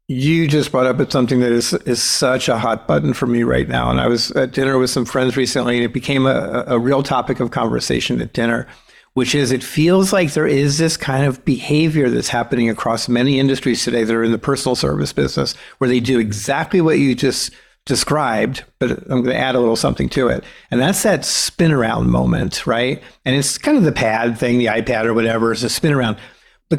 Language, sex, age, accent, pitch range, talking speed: English, male, 50-69, American, 120-155 Hz, 225 wpm